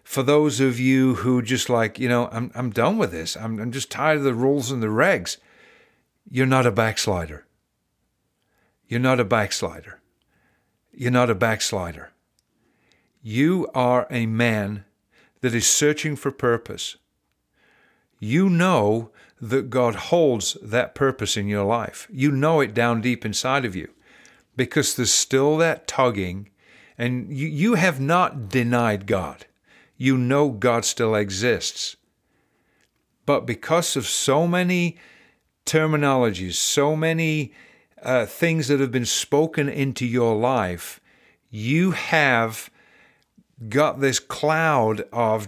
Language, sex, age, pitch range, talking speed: English, male, 50-69, 110-145 Hz, 135 wpm